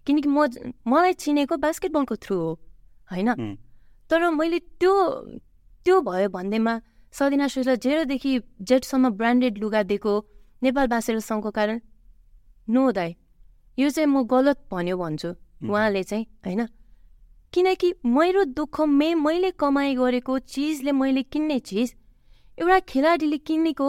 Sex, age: female, 20-39